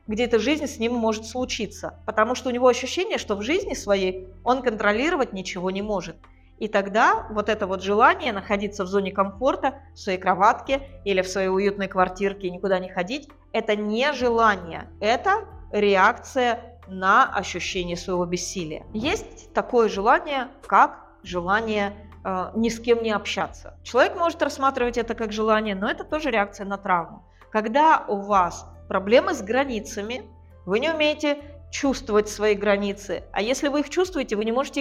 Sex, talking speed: female, 160 wpm